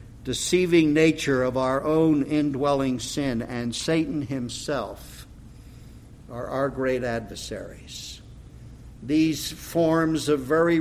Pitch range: 125-160 Hz